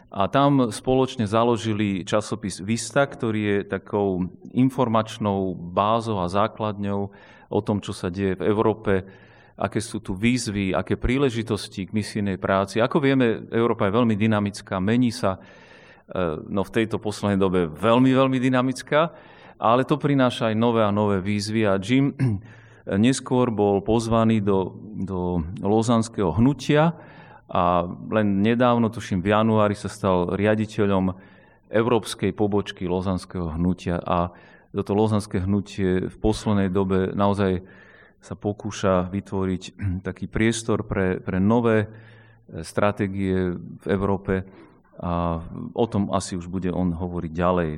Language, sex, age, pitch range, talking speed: Slovak, male, 40-59, 95-115 Hz, 130 wpm